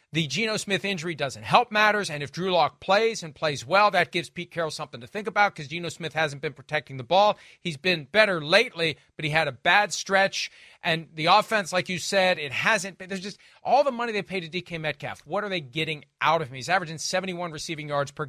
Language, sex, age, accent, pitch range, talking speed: English, male, 40-59, American, 160-205 Hz, 240 wpm